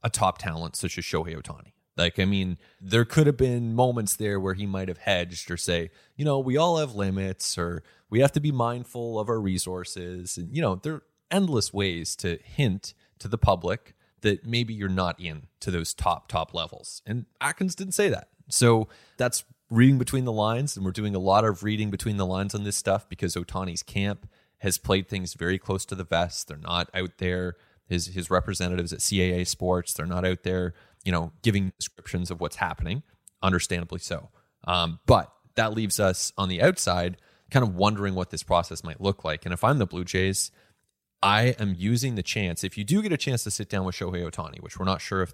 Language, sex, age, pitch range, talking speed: English, male, 30-49, 90-115 Hz, 215 wpm